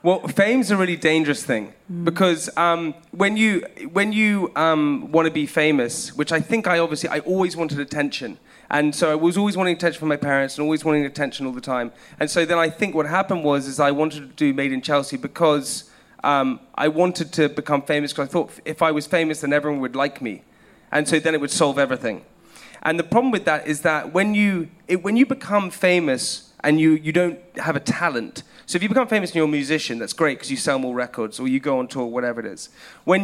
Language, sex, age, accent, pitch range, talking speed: English, male, 20-39, British, 145-180 Hz, 235 wpm